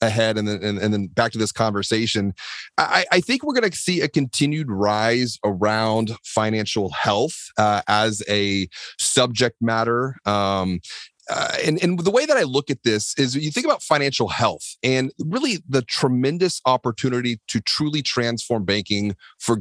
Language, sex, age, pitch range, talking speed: English, male, 30-49, 105-130 Hz, 160 wpm